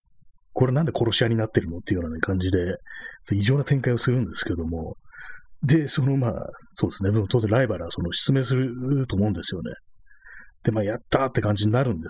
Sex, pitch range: male, 85-125 Hz